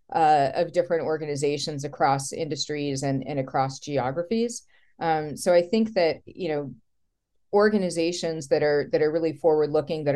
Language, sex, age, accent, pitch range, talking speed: English, female, 40-59, American, 140-170 Hz, 150 wpm